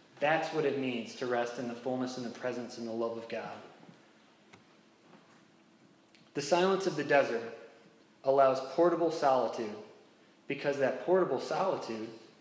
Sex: male